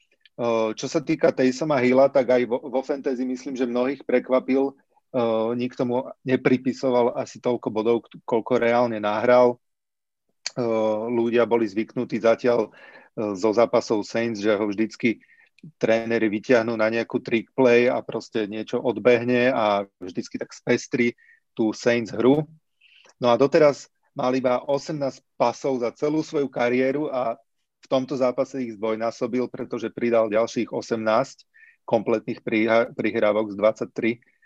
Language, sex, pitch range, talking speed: Slovak, male, 115-135 Hz, 135 wpm